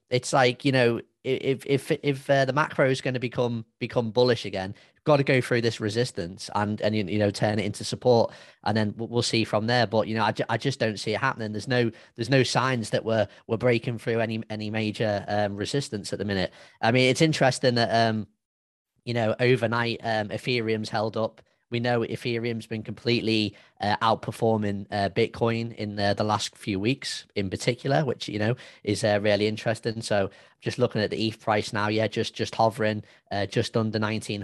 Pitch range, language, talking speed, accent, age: 110-125 Hz, English, 210 wpm, British, 20-39